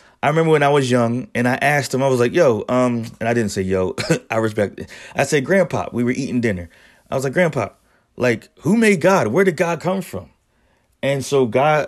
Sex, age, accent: male, 30-49, American